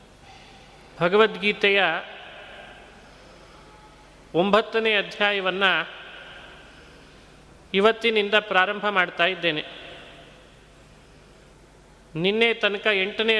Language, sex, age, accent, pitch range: Kannada, male, 30-49, native, 185-220 Hz